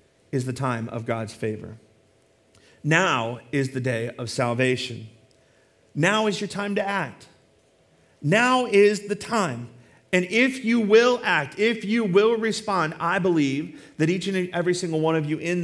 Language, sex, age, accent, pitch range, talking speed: English, male, 40-59, American, 130-190 Hz, 160 wpm